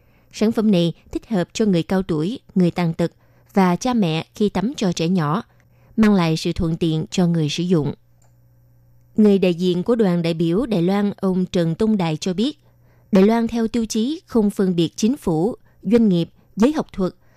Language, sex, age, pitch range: Vietnamese, female, 20-39, 165-215 Hz